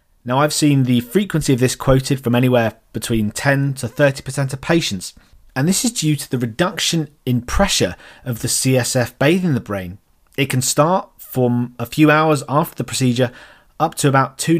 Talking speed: 185 wpm